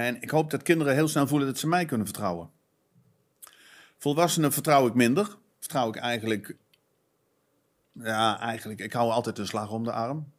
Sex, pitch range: male, 110-140 Hz